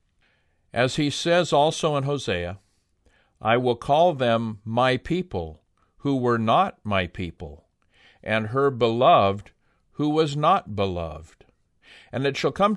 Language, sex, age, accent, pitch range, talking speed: English, male, 50-69, American, 100-135 Hz, 130 wpm